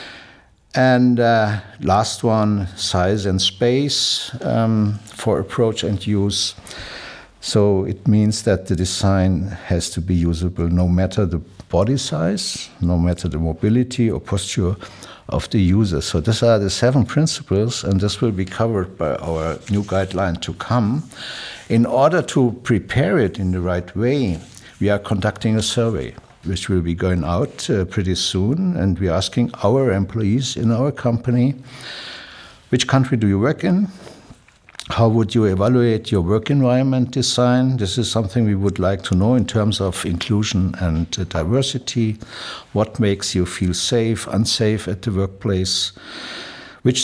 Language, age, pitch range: English, 60-79, 95-120 Hz